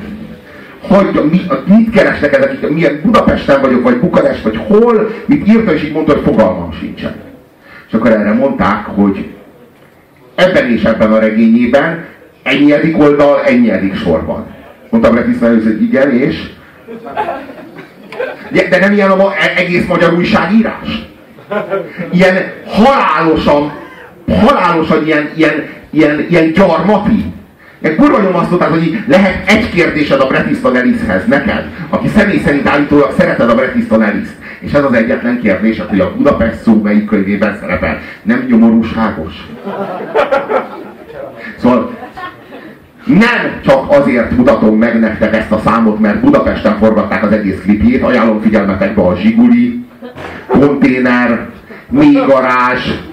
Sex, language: male, Hungarian